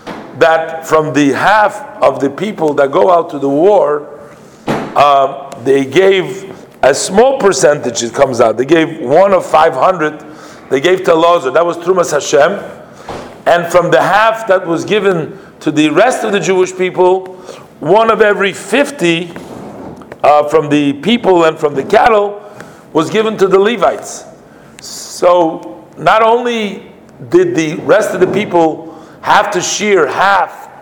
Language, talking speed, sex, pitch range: English, 155 wpm, male, 160-210 Hz